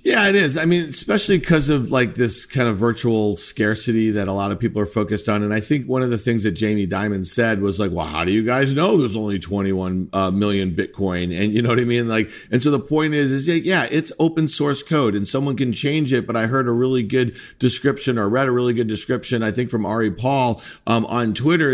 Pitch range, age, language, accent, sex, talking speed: 115-140 Hz, 40-59, English, American, male, 255 wpm